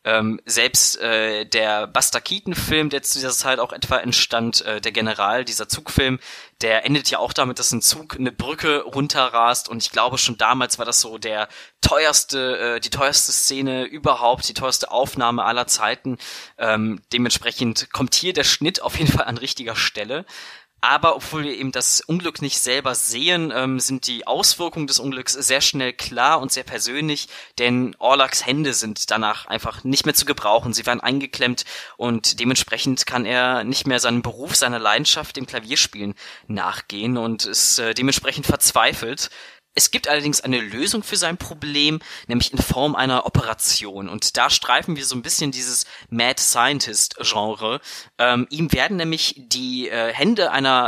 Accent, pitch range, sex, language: German, 115-140 Hz, male, German